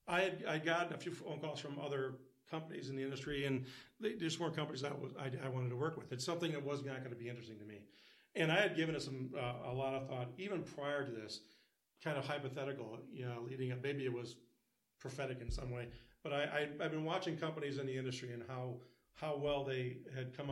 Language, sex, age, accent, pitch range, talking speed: English, male, 40-59, American, 130-150 Hz, 240 wpm